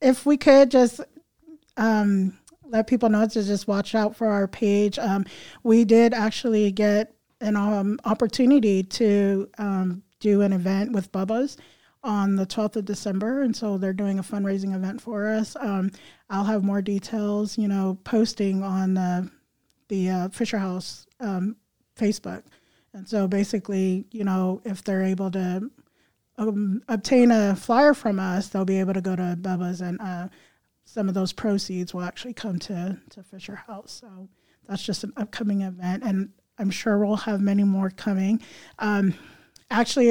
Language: English